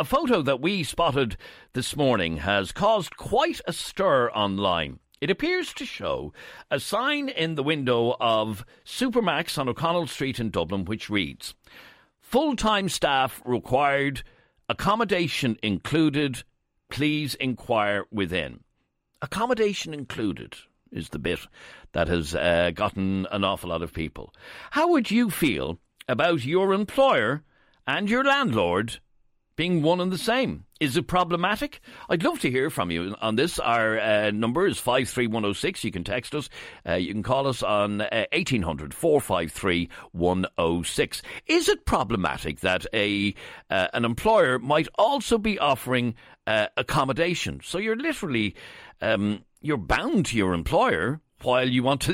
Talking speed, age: 145 wpm, 60-79